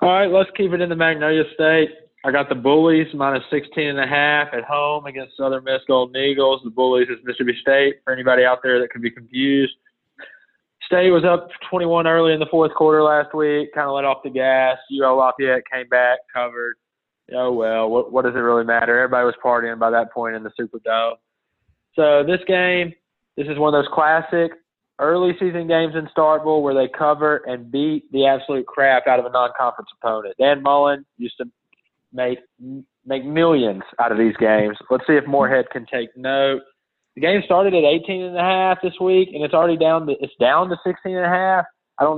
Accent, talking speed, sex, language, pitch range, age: American, 210 wpm, male, English, 130-160 Hz, 20-39